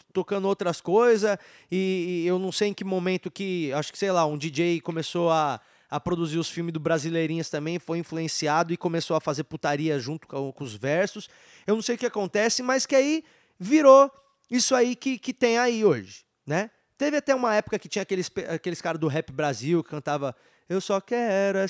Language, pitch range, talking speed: Portuguese, 145-200 Hz, 205 wpm